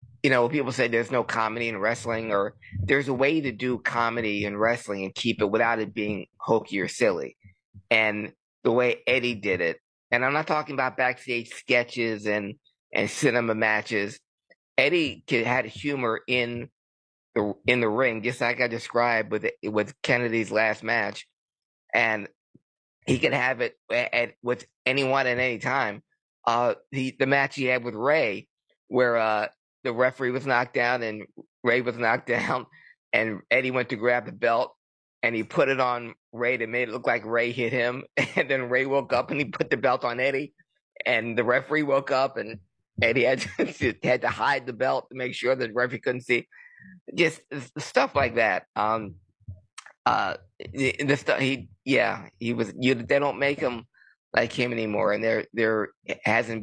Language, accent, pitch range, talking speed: English, American, 110-130 Hz, 185 wpm